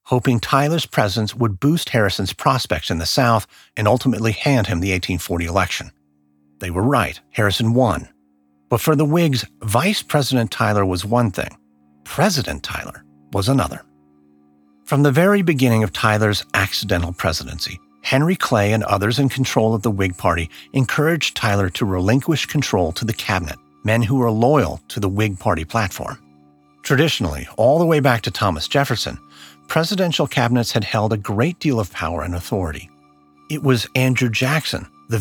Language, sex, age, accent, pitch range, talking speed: English, male, 50-69, American, 90-130 Hz, 160 wpm